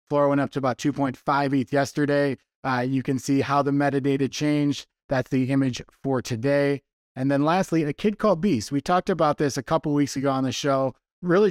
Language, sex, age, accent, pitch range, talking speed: English, male, 20-39, American, 135-150 Hz, 210 wpm